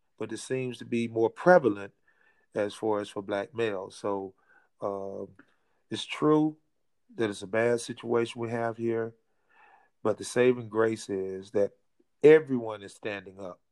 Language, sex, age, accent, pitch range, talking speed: English, male, 40-59, American, 105-125 Hz, 155 wpm